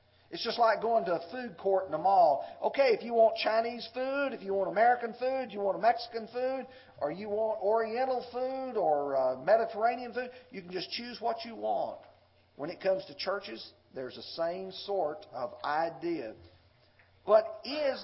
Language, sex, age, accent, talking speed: English, male, 50-69, American, 185 wpm